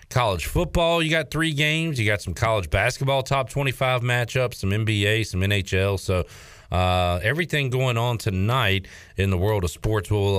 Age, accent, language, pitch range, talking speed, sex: 40-59, American, English, 95-120 Hz, 175 wpm, male